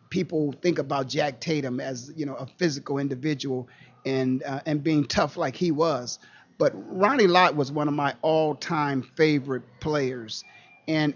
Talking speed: 160 wpm